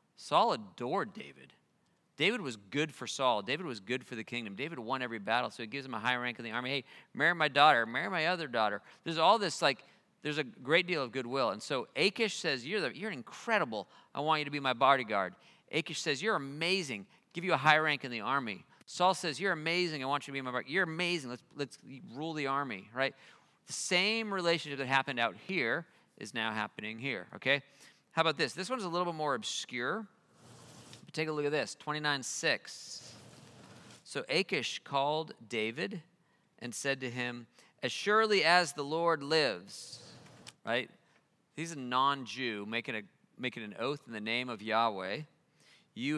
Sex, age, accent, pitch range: male, 40-59, American, 115-160 Hz